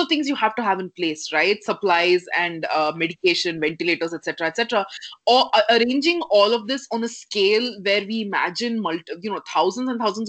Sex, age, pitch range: female, 20-39, 195-235 Hz